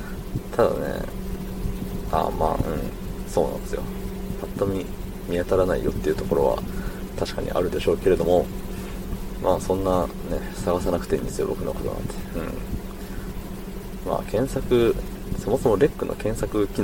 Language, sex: Japanese, male